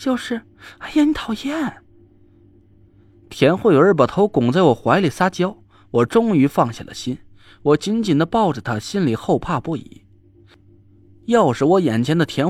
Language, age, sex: Chinese, 20-39, male